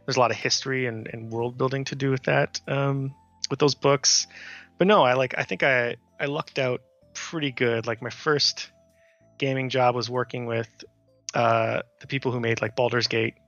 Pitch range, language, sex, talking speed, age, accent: 115-135 Hz, English, male, 200 wpm, 20-39, American